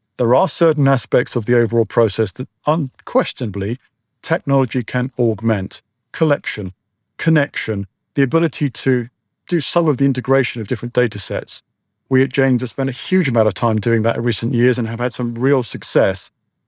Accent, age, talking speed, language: British, 50-69, 175 wpm, English